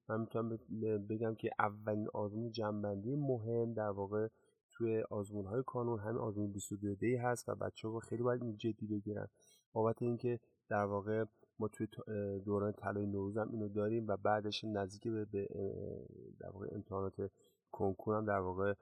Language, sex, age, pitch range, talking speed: Persian, male, 30-49, 105-120 Hz, 145 wpm